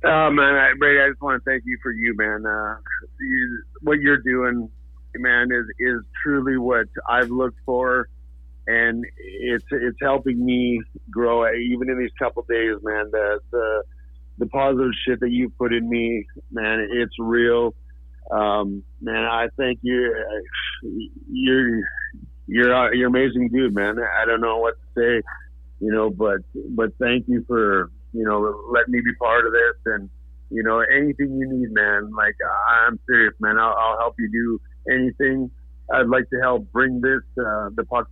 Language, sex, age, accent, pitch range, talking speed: English, male, 50-69, American, 105-125 Hz, 175 wpm